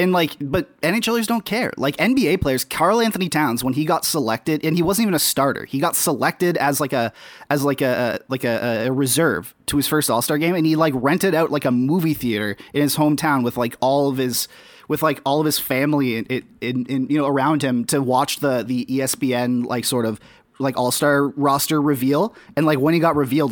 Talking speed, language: 230 wpm, English